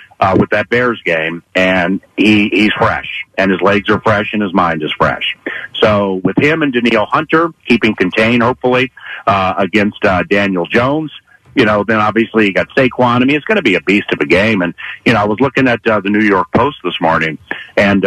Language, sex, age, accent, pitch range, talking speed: English, male, 50-69, American, 95-115 Hz, 220 wpm